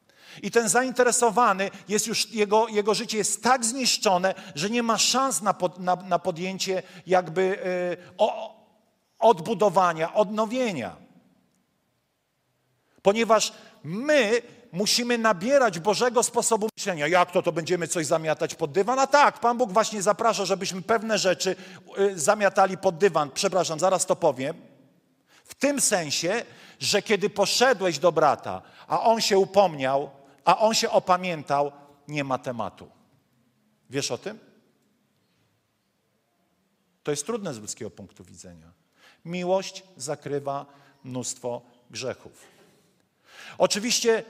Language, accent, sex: Polish, native, male